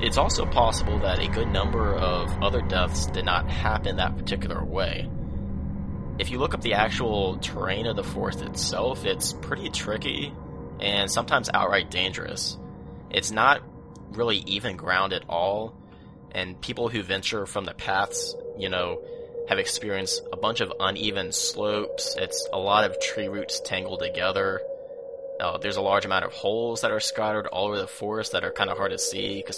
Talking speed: 175 wpm